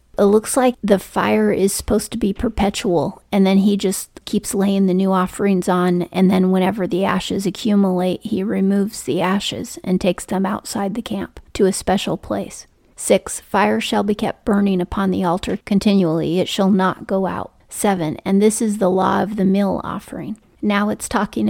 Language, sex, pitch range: English, female, 190-210 Hz